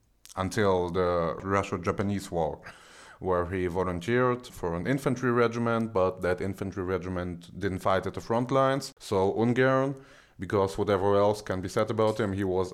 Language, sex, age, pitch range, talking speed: English, male, 30-49, 85-105 Hz, 155 wpm